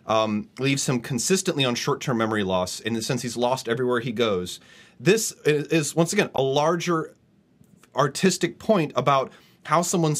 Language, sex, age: English, male, 30-49